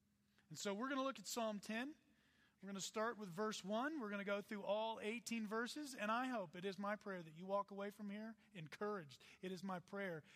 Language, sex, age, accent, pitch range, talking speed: English, male, 40-59, American, 175-235 Hz, 245 wpm